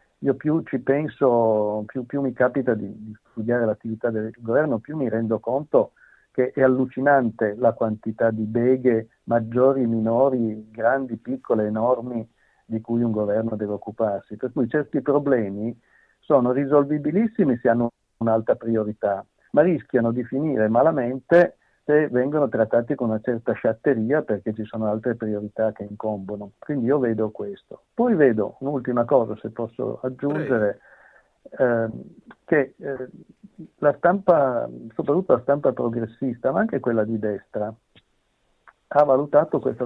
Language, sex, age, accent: Italian, male, 50-69, native